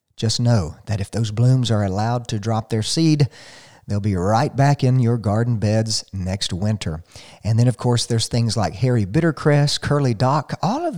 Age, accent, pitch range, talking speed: 40-59, American, 105-135 Hz, 190 wpm